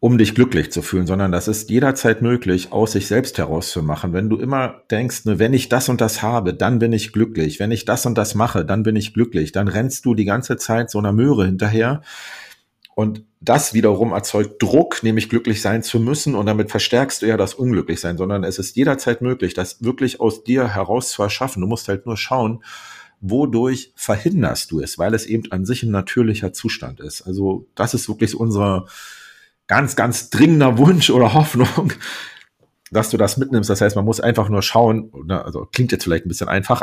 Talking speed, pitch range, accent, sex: 205 wpm, 100-120 Hz, German, male